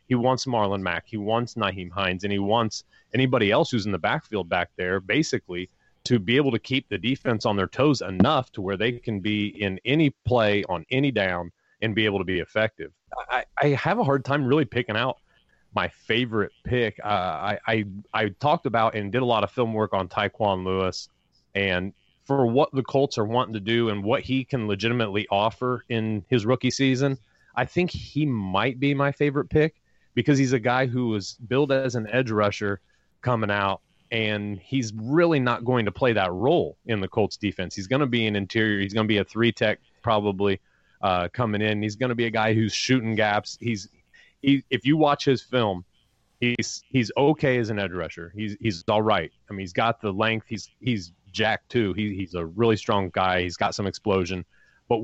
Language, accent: English, American